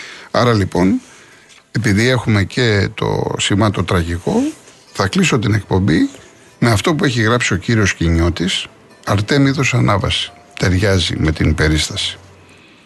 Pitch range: 90-115 Hz